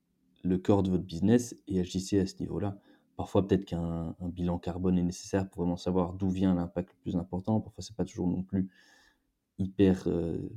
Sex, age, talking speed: male, 20-39, 205 wpm